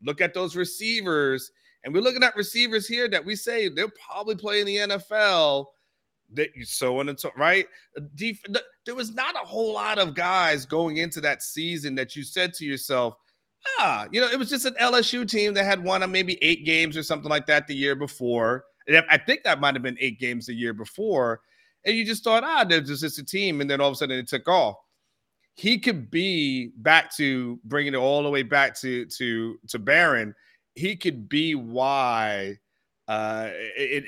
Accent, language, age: American, English, 30-49